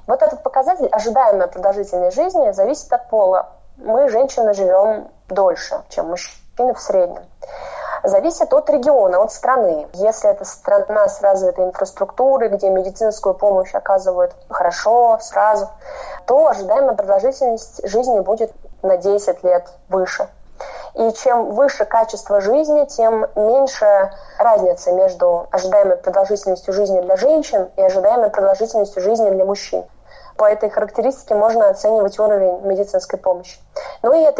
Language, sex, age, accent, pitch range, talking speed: Russian, female, 20-39, native, 195-280 Hz, 130 wpm